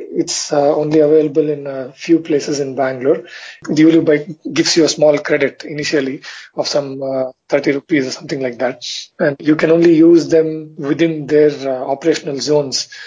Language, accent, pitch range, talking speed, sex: English, Indian, 145-165 Hz, 180 wpm, male